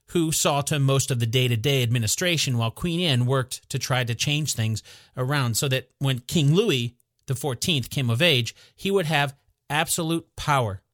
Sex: male